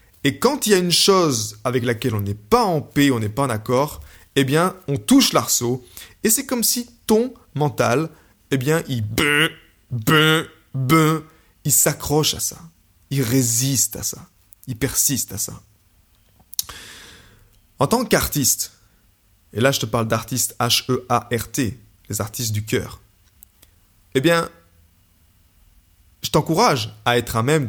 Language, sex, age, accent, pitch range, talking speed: French, male, 20-39, French, 100-145 Hz, 145 wpm